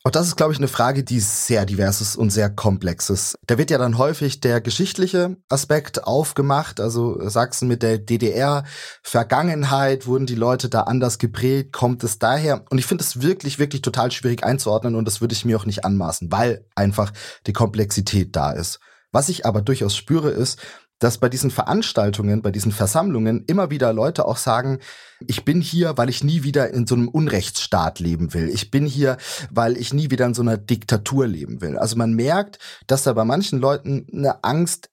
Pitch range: 105-135 Hz